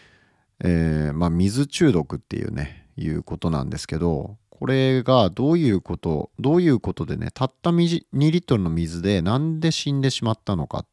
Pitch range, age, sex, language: 90-145 Hz, 40-59, male, Japanese